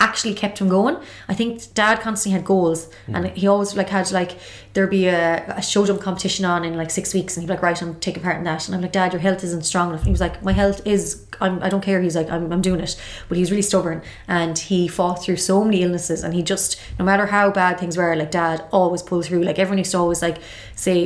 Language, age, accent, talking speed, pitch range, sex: English, 20-39, Irish, 270 wpm, 170-195 Hz, female